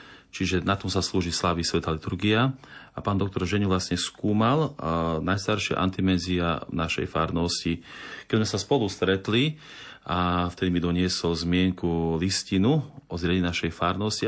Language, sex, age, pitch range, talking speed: Slovak, male, 40-59, 85-105 Hz, 145 wpm